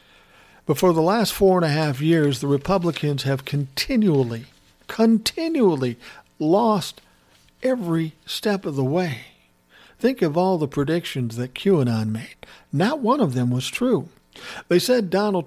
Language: English